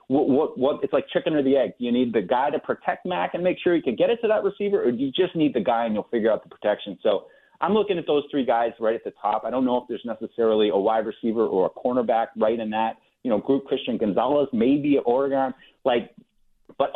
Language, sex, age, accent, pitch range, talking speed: English, male, 30-49, American, 115-165 Hz, 265 wpm